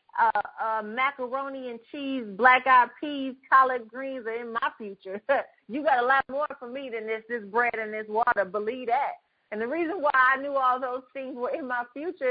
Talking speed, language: 210 wpm, English